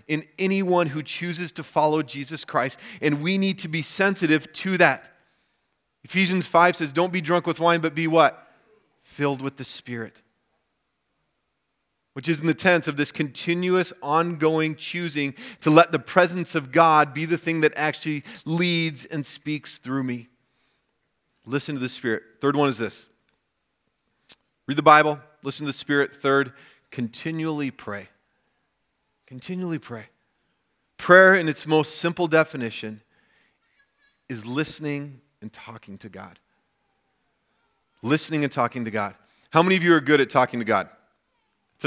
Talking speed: 150 wpm